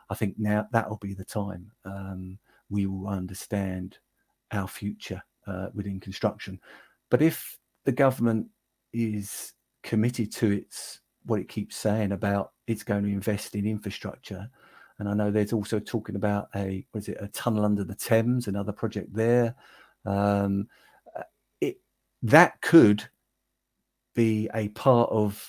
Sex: male